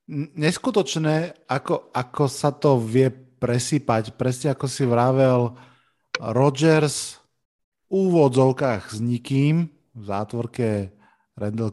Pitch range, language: 110-140 Hz, Slovak